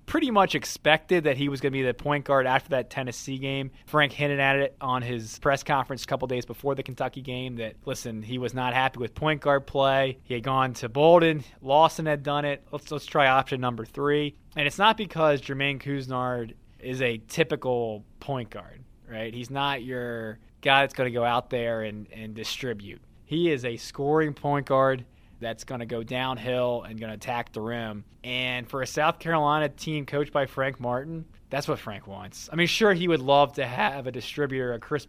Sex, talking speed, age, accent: male, 210 wpm, 20-39, American